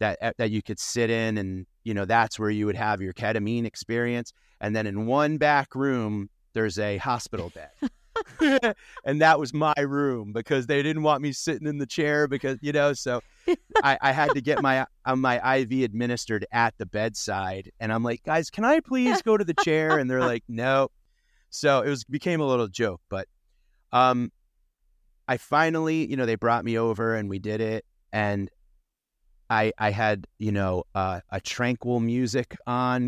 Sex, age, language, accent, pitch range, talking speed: male, 30-49, English, American, 105-130 Hz, 190 wpm